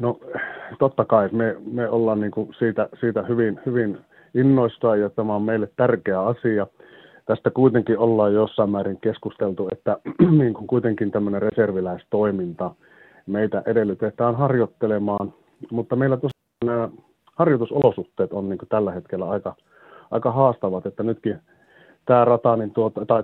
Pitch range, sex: 100-120 Hz, male